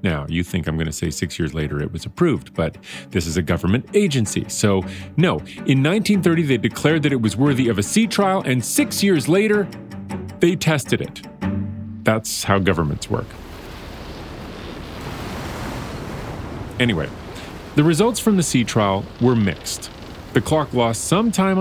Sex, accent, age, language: male, American, 40-59, English